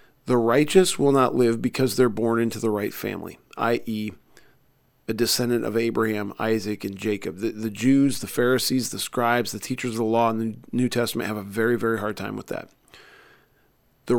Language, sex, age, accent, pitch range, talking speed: English, male, 40-59, American, 115-130 Hz, 190 wpm